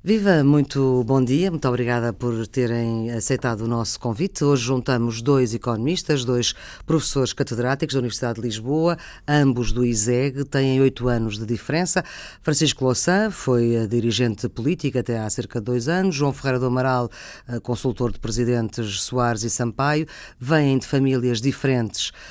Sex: female